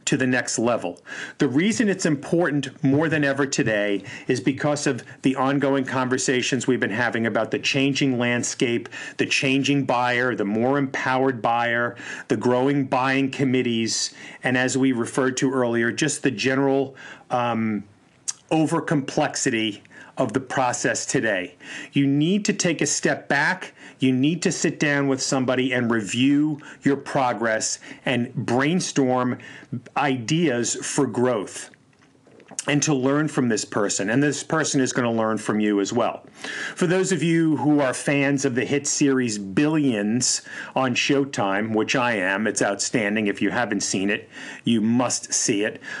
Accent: American